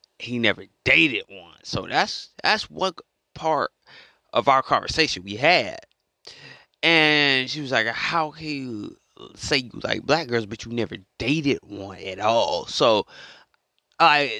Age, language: 20-39, English